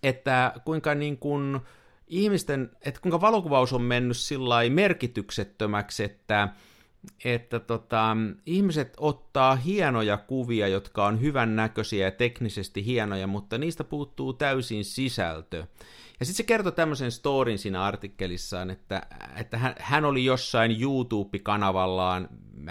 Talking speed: 120 wpm